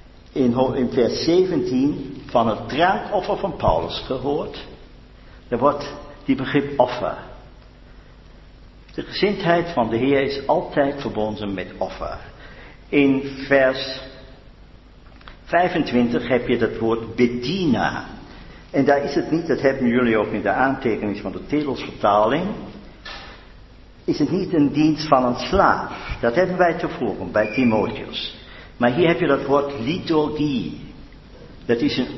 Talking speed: 130 wpm